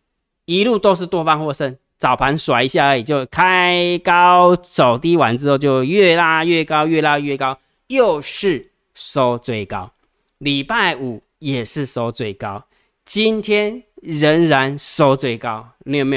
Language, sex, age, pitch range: Chinese, male, 20-39, 130-170 Hz